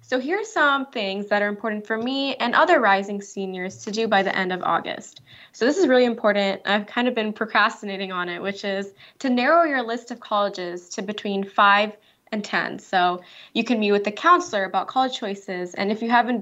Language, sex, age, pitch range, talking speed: English, female, 20-39, 200-250 Hz, 215 wpm